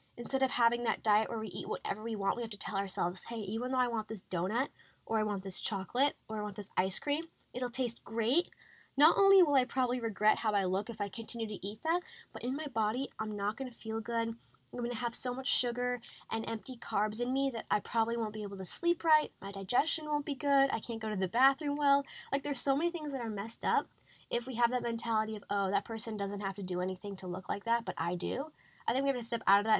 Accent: American